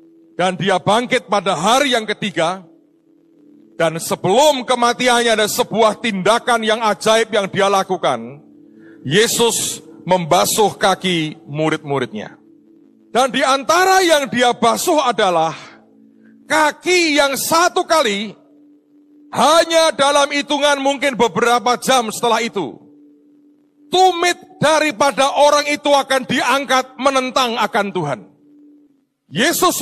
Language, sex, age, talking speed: Indonesian, male, 40-59, 100 wpm